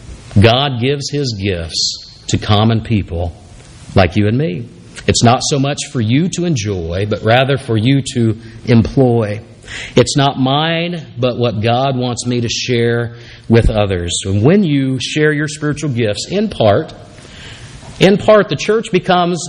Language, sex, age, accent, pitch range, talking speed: English, male, 50-69, American, 115-155 Hz, 155 wpm